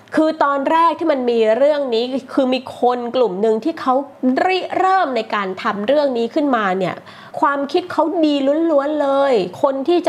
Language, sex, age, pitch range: Thai, female, 20-39, 240-325 Hz